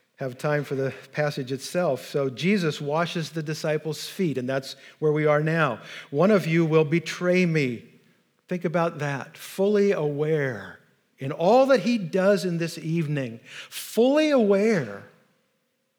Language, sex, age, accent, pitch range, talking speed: English, male, 50-69, American, 135-170 Hz, 145 wpm